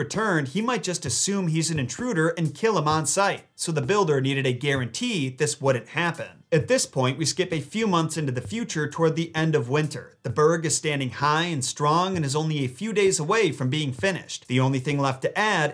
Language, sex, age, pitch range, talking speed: English, male, 30-49, 135-175 Hz, 235 wpm